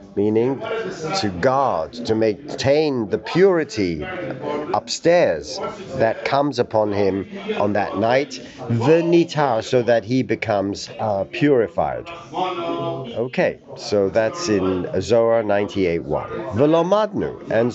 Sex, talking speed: male, 95 wpm